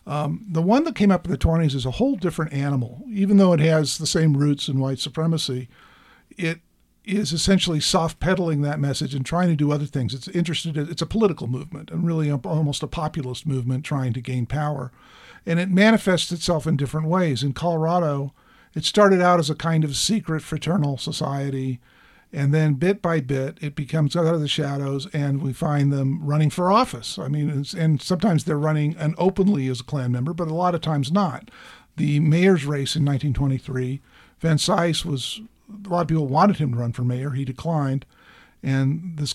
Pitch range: 140-170 Hz